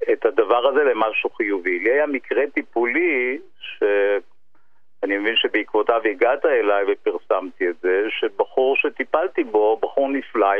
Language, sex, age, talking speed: Hebrew, male, 50-69, 125 wpm